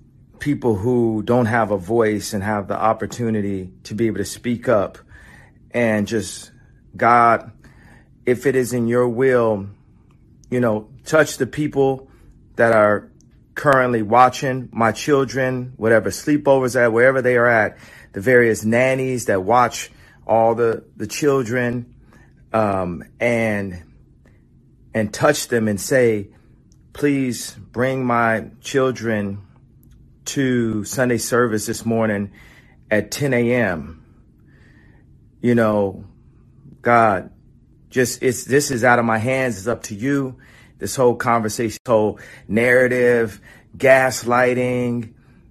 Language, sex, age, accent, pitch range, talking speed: English, male, 40-59, American, 110-125 Hz, 120 wpm